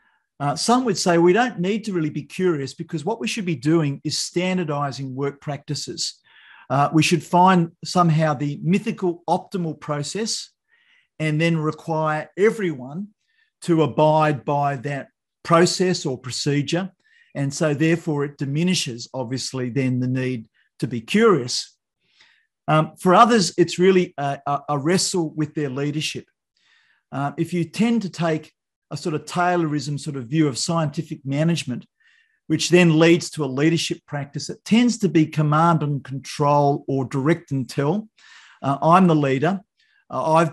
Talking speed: 155 wpm